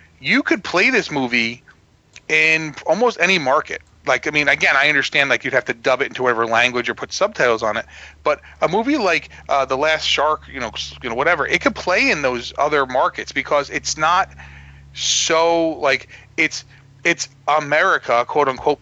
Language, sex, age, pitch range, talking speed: English, male, 30-49, 125-155 Hz, 190 wpm